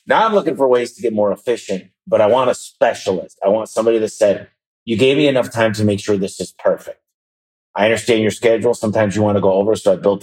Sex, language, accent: male, English, American